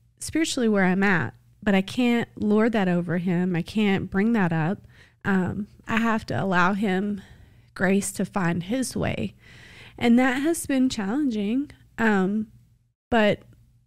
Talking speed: 145 wpm